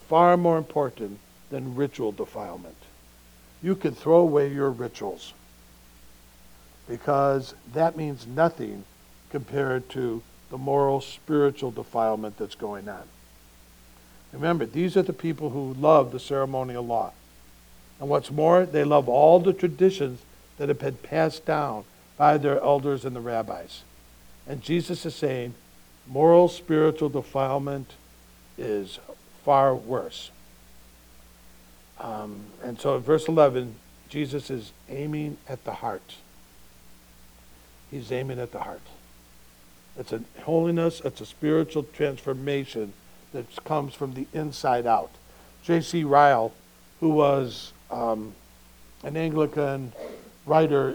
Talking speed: 120 wpm